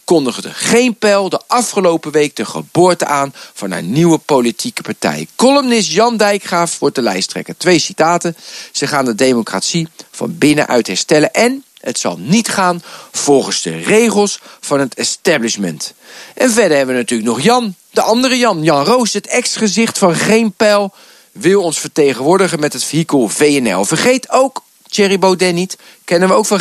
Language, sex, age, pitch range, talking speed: Dutch, male, 40-59, 145-205 Hz, 165 wpm